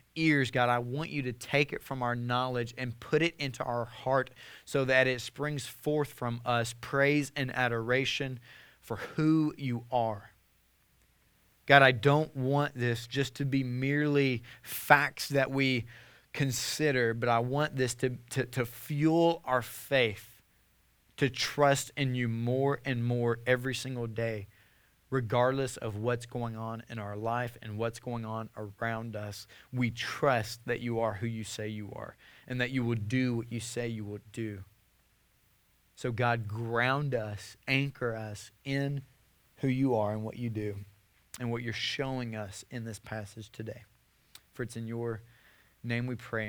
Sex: male